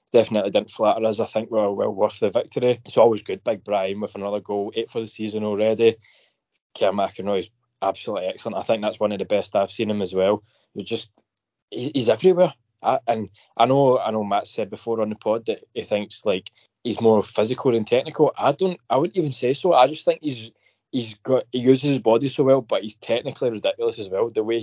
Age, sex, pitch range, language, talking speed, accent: 20-39, male, 105-125 Hz, English, 230 wpm, British